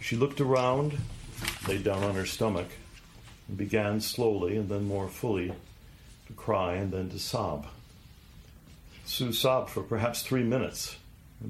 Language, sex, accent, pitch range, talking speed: English, male, American, 90-115 Hz, 145 wpm